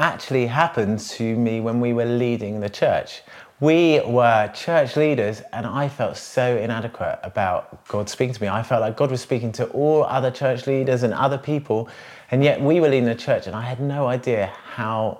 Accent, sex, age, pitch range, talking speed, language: British, male, 30-49, 115-140 Hz, 200 wpm, English